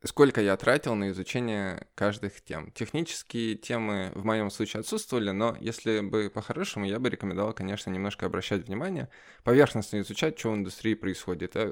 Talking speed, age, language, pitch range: 160 wpm, 20-39, Russian, 100-115 Hz